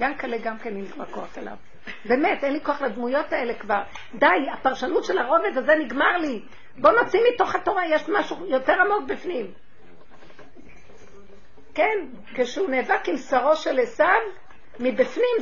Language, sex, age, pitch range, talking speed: Hebrew, female, 50-69, 205-290 Hz, 150 wpm